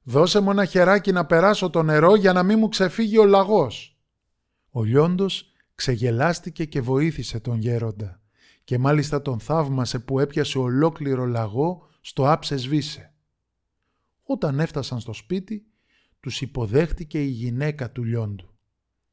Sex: male